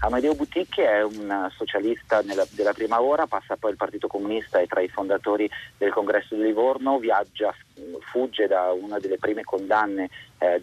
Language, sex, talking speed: Italian, male, 175 wpm